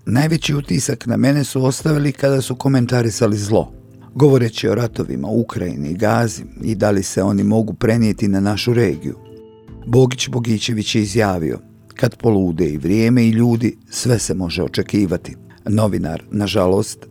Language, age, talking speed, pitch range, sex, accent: Croatian, 50-69, 145 wpm, 105-125 Hz, male, native